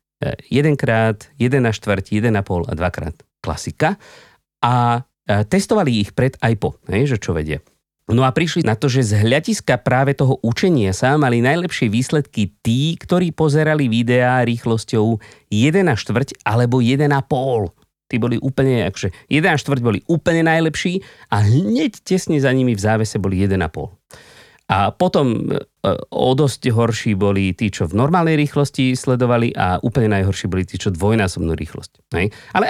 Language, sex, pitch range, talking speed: Slovak, male, 105-140 Hz, 150 wpm